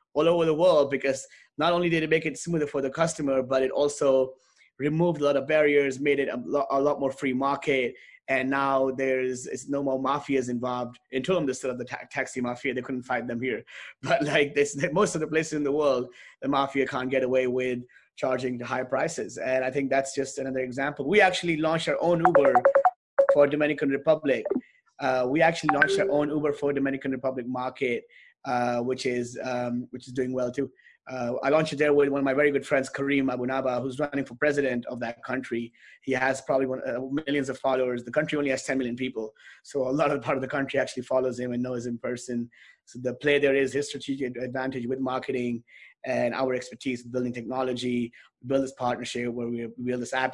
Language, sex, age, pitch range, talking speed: English, male, 20-39, 125-145 Hz, 210 wpm